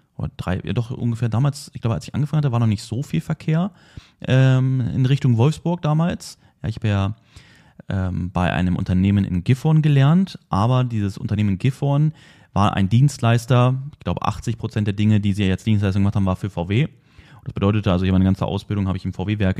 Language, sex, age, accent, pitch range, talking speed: German, male, 30-49, German, 100-130 Hz, 195 wpm